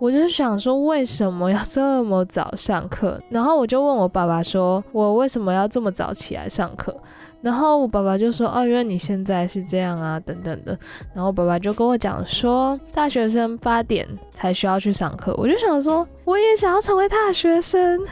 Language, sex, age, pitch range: Chinese, female, 10-29, 190-265 Hz